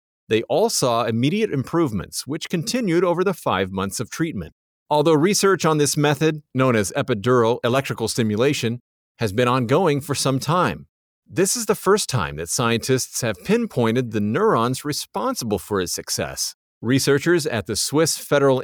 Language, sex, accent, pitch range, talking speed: English, male, American, 110-155 Hz, 160 wpm